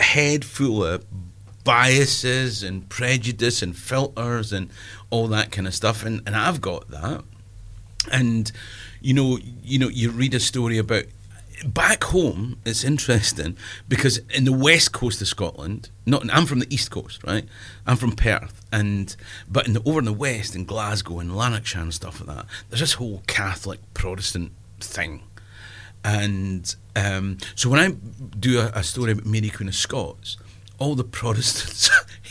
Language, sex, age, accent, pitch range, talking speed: English, male, 40-59, British, 100-125 Hz, 165 wpm